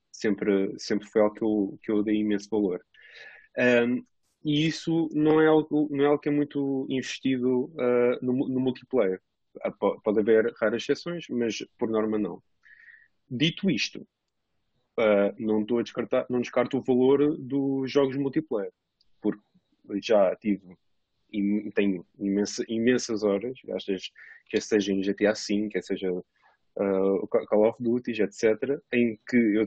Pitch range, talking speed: 110-135 Hz, 150 wpm